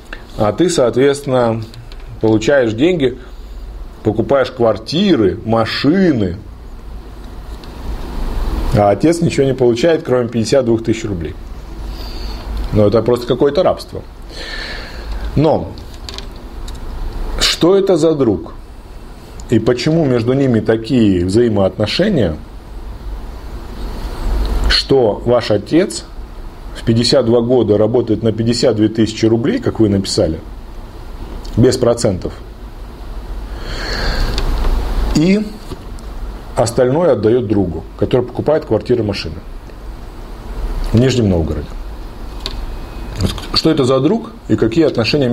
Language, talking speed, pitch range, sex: Russian, 90 wpm, 95-125 Hz, male